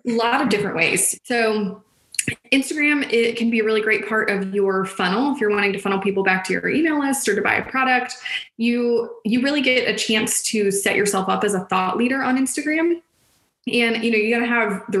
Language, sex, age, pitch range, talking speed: English, female, 20-39, 190-230 Hz, 230 wpm